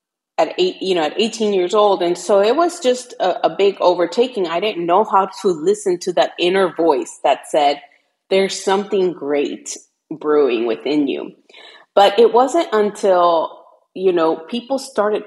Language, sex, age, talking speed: English, female, 30-49, 170 wpm